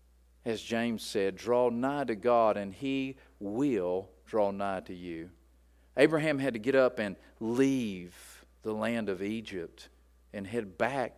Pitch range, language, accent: 90-115 Hz, English, American